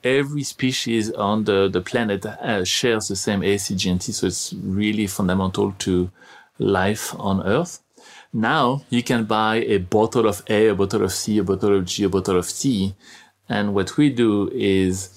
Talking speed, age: 175 wpm, 30-49